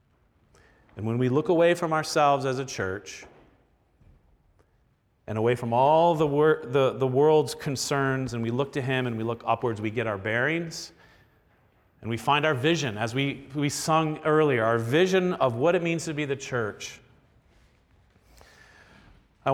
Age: 40-59